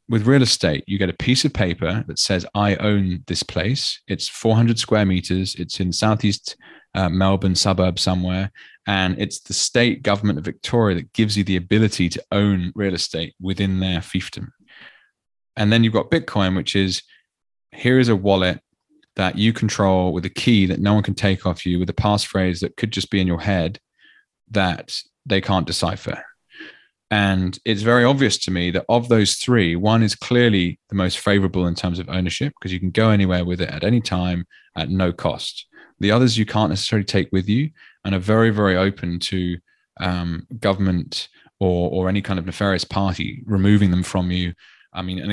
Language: English